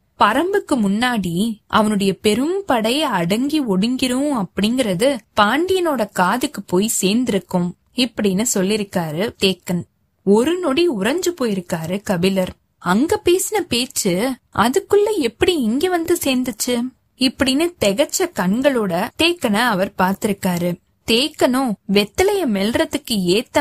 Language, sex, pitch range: Tamil, female, 195-275 Hz